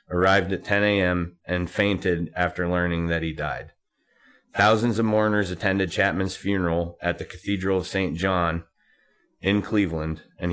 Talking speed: 150 wpm